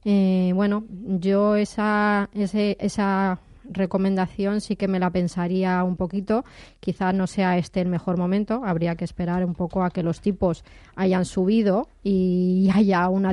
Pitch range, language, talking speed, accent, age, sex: 170-195 Hz, Spanish, 160 wpm, Spanish, 20-39, female